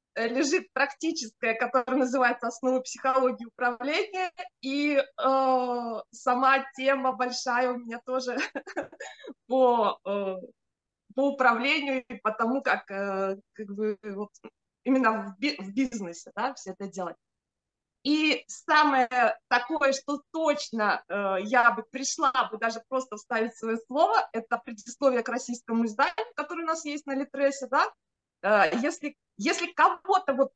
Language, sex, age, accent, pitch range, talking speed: Russian, female, 20-39, native, 225-280 Hz, 130 wpm